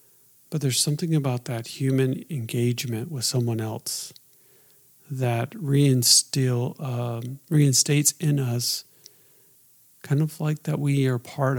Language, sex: English, male